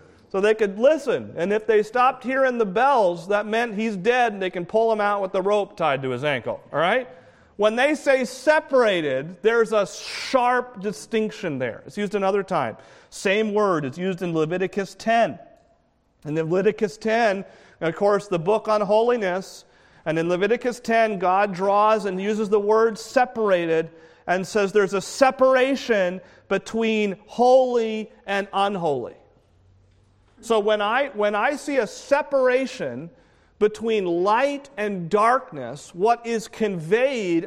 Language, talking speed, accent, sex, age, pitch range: English, 150 wpm, American, male, 40-59, 175-225 Hz